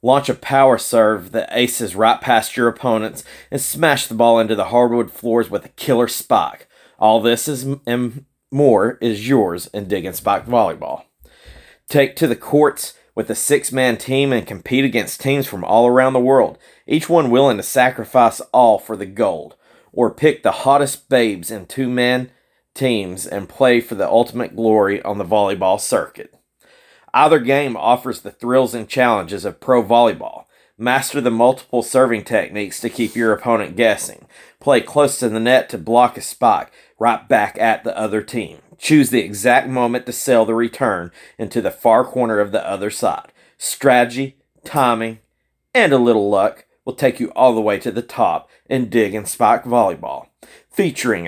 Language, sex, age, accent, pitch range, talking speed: English, male, 40-59, American, 110-130 Hz, 175 wpm